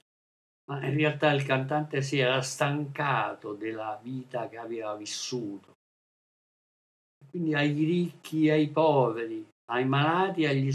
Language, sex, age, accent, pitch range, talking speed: Italian, male, 50-69, native, 130-165 Hz, 130 wpm